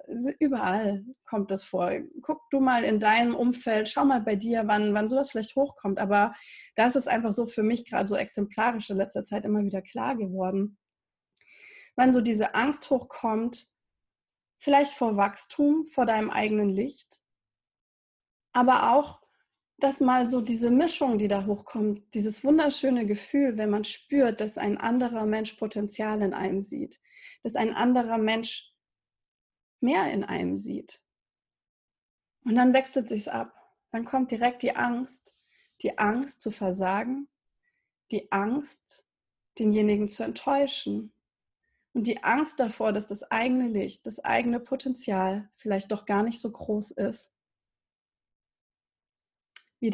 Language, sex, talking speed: German, female, 140 wpm